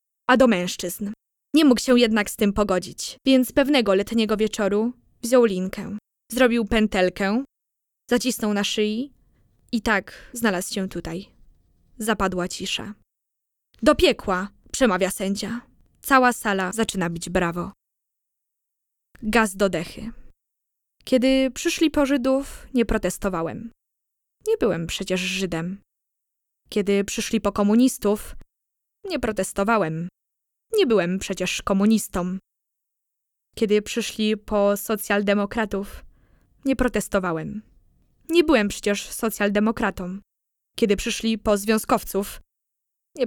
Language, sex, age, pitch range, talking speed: Polish, female, 20-39, 190-235 Hz, 105 wpm